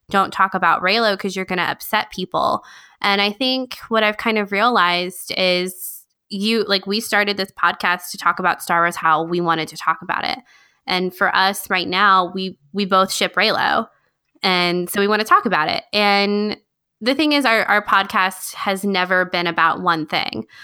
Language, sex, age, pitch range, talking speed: English, female, 20-39, 175-215 Hz, 200 wpm